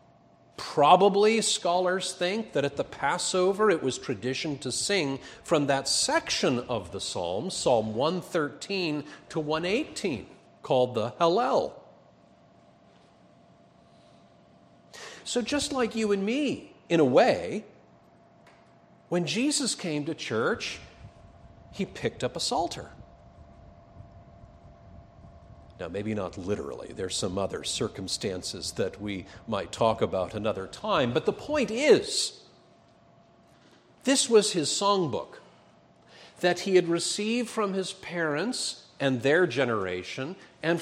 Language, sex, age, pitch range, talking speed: English, male, 50-69, 130-205 Hz, 115 wpm